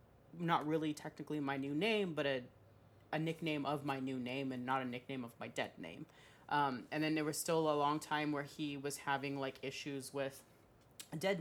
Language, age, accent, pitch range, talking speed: English, 30-49, American, 130-155 Hz, 205 wpm